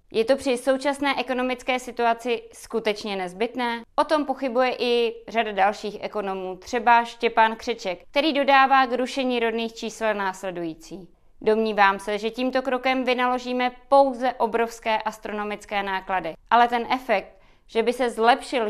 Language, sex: Czech, female